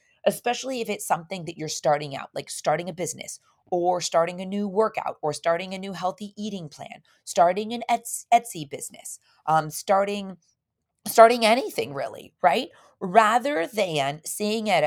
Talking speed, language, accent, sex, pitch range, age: 155 wpm, English, American, female, 165-230 Hz, 30-49